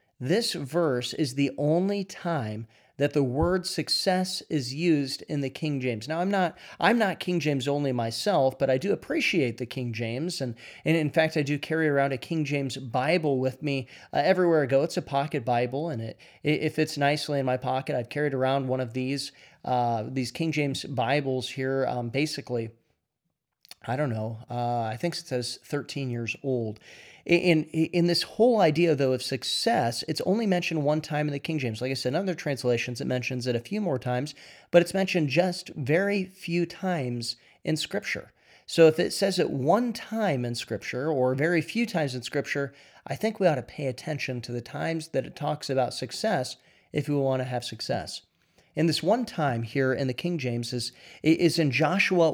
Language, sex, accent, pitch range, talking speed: English, male, American, 125-165 Hz, 205 wpm